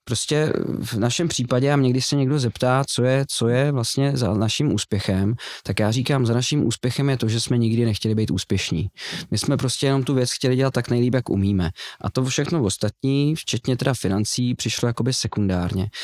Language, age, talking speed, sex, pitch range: Czech, 20-39, 200 wpm, male, 105-130 Hz